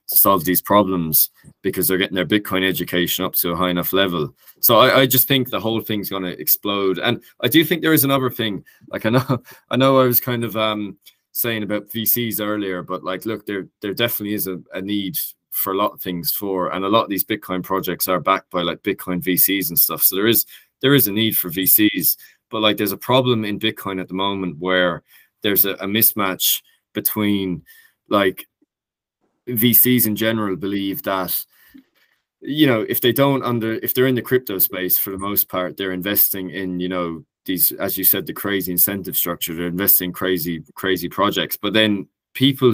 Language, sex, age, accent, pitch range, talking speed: English, male, 20-39, Irish, 95-115 Hz, 205 wpm